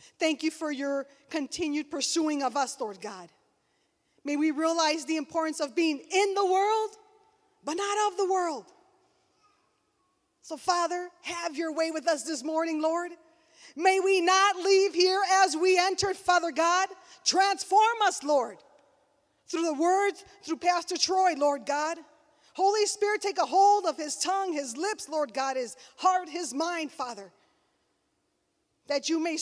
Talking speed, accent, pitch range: 155 wpm, American, 280-365 Hz